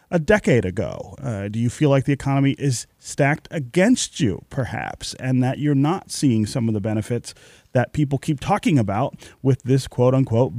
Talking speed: 180 wpm